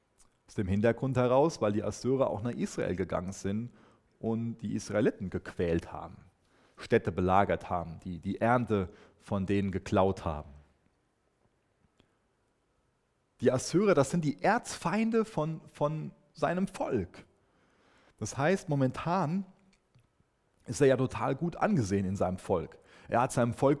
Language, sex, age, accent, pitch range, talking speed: German, male, 30-49, German, 110-175 Hz, 135 wpm